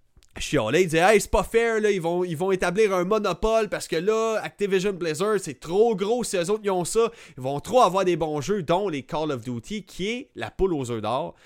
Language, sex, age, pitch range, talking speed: French, male, 30-49, 135-215 Hz, 265 wpm